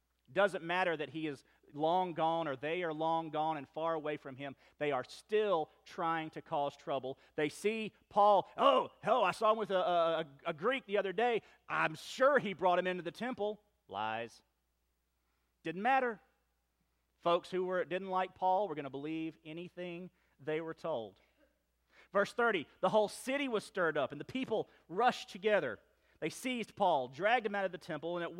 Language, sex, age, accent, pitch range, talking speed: English, male, 40-59, American, 150-205 Hz, 190 wpm